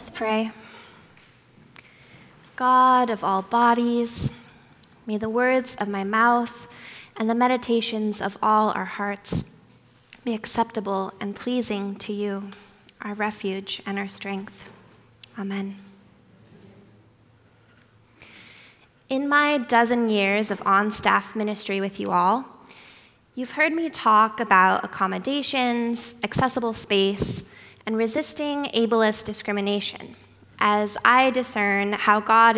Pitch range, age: 200-240 Hz, 20-39